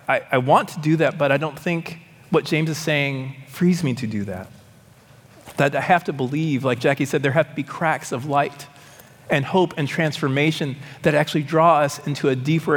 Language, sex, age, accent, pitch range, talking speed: English, male, 40-59, American, 125-155 Hz, 210 wpm